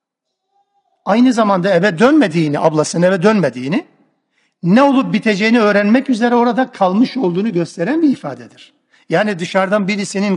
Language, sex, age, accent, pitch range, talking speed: Turkish, male, 60-79, native, 195-265 Hz, 120 wpm